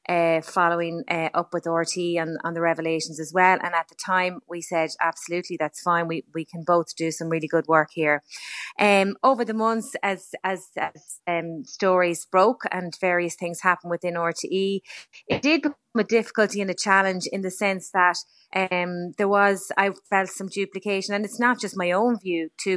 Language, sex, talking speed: English, female, 195 wpm